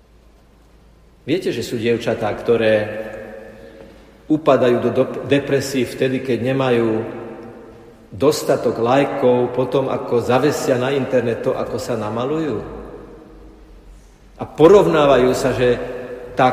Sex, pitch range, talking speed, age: male, 120-165 Hz, 100 wpm, 50-69